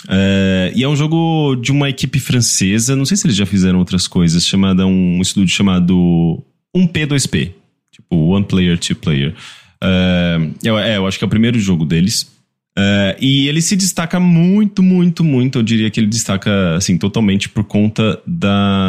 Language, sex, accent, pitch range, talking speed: English, male, Brazilian, 85-110 Hz, 180 wpm